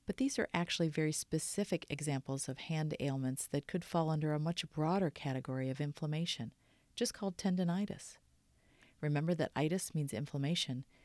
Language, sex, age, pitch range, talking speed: English, female, 50-69, 135-170 Hz, 150 wpm